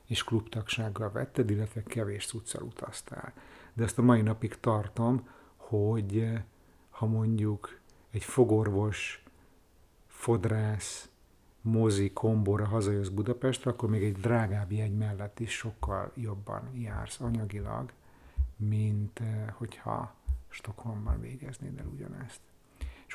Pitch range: 100-120 Hz